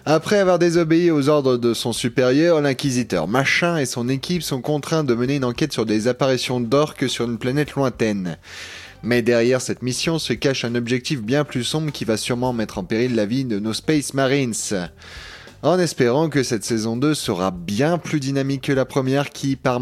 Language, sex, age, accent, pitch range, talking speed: French, male, 20-39, French, 115-140 Hz, 195 wpm